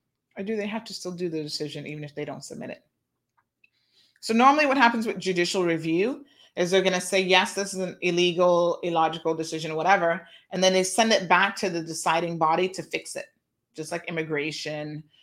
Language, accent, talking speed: English, American, 205 wpm